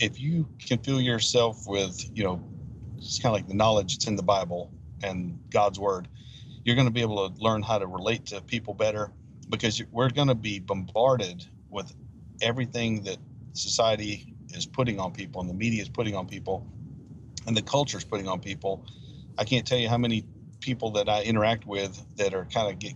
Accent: American